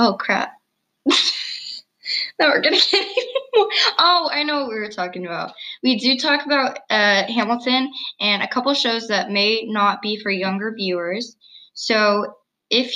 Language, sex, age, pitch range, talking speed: English, female, 10-29, 205-260 Hz, 160 wpm